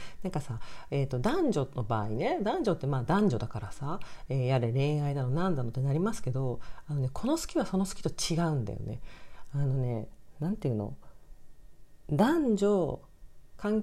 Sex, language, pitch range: female, Japanese, 130-190 Hz